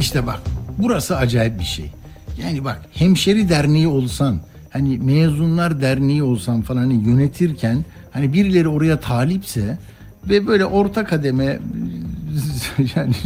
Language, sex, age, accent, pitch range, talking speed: Turkish, male, 60-79, native, 120-175 Hz, 120 wpm